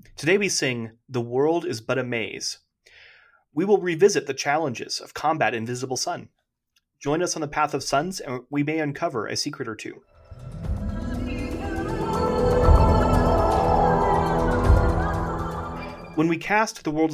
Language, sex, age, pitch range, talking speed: English, male, 30-49, 120-155 Hz, 135 wpm